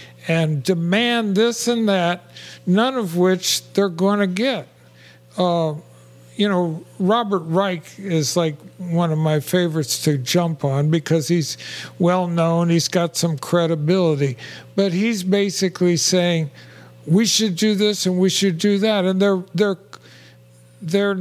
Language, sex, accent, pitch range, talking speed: English, male, American, 155-195 Hz, 145 wpm